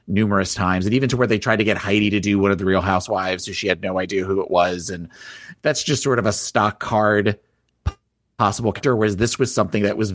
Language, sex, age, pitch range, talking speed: English, male, 30-49, 95-115 Hz, 250 wpm